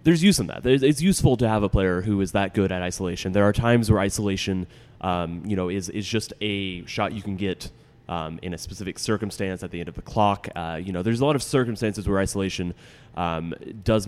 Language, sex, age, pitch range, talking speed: English, male, 20-39, 90-110 Hz, 240 wpm